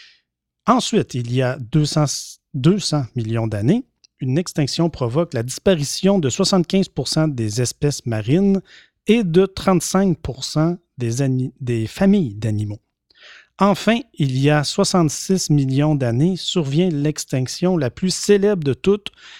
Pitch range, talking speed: 130-190 Hz, 120 wpm